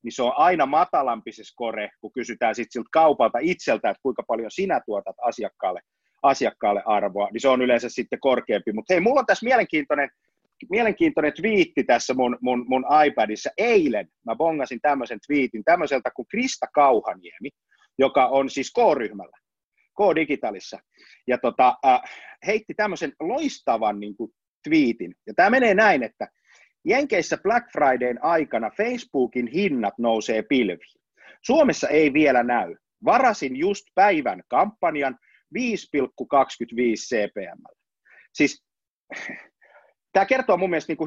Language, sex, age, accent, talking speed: Finnish, male, 30-49, native, 130 wpm